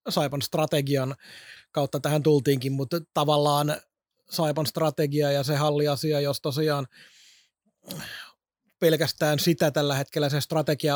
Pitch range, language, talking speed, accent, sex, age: 140-160 Hz, Finnish, 110 wpm, native, male, 30-49